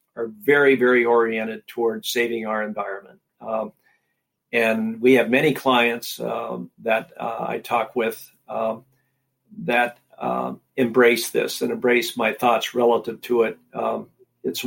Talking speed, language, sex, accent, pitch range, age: 140 wpm, English, male, American, 115-125 Hz, 50-69